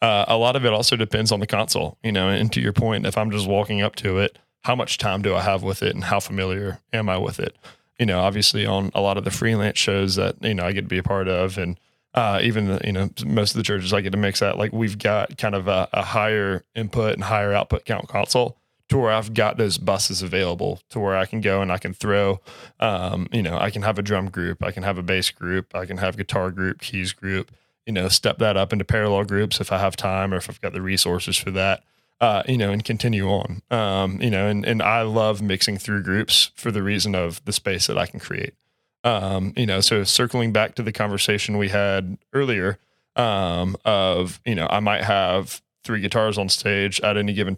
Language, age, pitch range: English, 20-39, 95-110 Hz